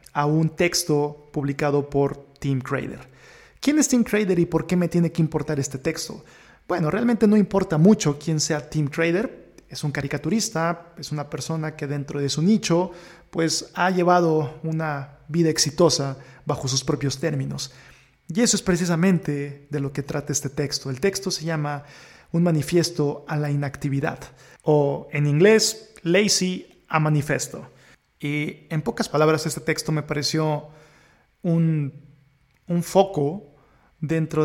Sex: male